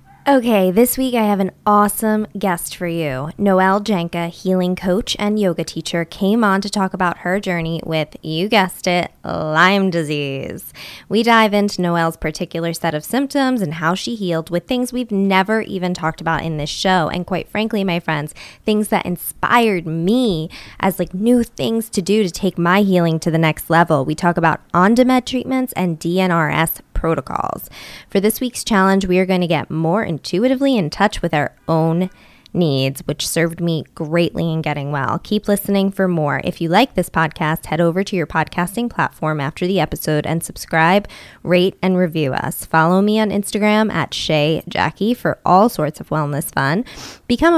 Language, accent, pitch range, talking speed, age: English, American, 165-205 Hz, 185 wpm, 20-39